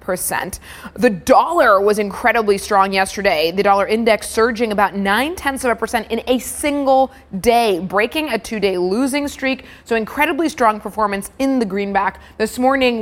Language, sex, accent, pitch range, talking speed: English, female, American, 195-235 Hz, 165 wpm